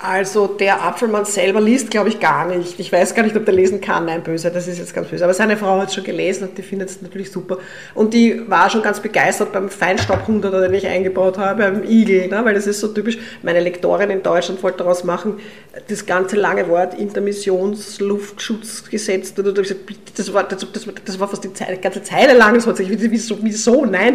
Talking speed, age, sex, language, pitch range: 210 wpm, 30-49, female, German, 185-215 Hz